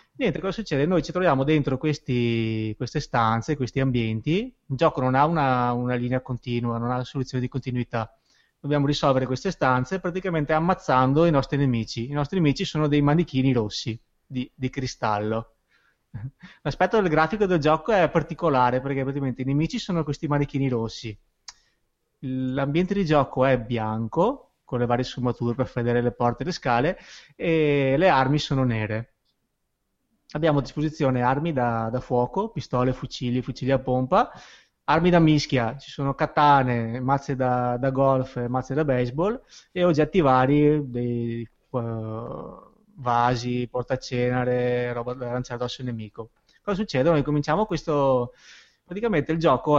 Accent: native